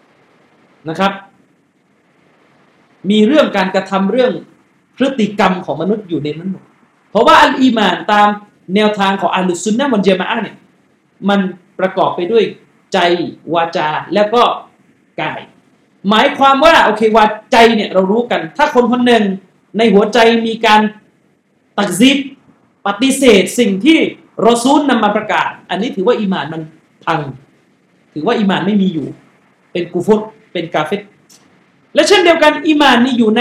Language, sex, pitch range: Thai, male, 200-280 Hz